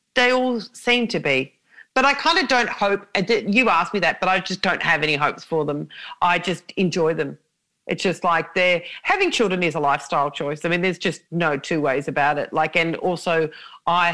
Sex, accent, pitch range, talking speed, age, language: female, Australian, 155-190 Hz, 215 wpm, 40-59, English